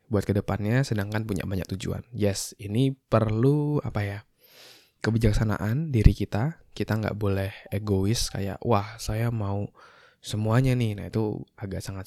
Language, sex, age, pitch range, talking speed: Indonesian, male, 20-39, 105-125 Hz, 145 wpm